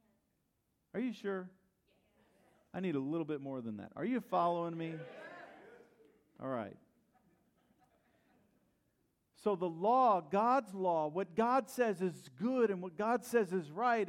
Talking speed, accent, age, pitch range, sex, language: 140 wpm, American, 50-69, 170-235 Hz, male, English